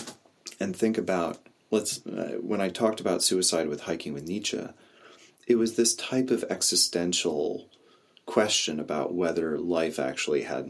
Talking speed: 145 wpm